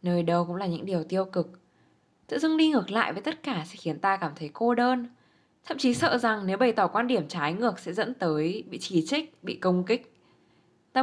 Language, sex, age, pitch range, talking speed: Vietnamese, female, 10-29, 165-225 Hz, 240 wpm